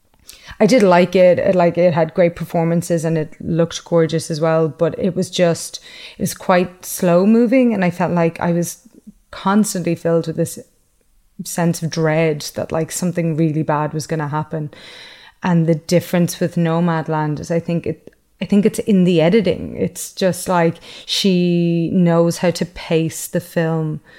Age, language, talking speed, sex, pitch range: 30-49, English, 170 wpm, female, 165-185 Hz